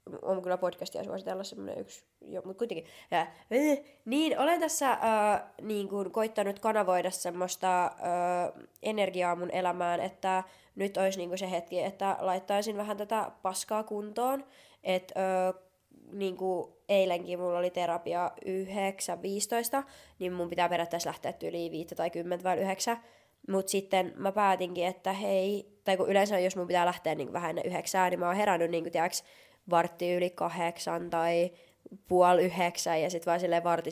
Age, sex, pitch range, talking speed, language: 20-39, female, 175-215 Hz, 155 wpm, Finnish